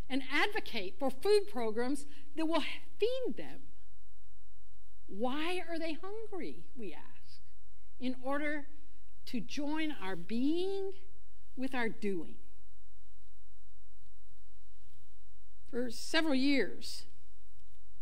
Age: 60-79